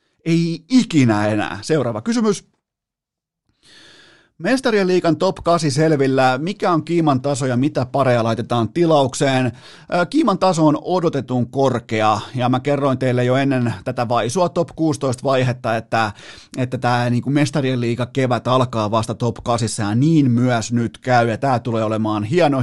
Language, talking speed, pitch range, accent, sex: Finnish, 150 wpm, 115-145 Hz, native, male